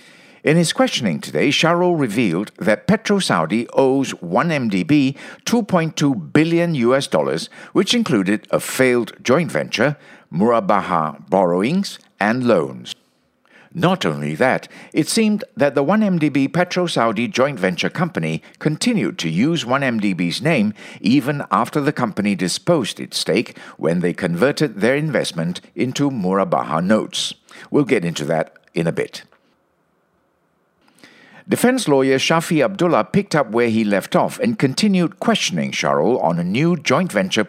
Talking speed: 130 wpm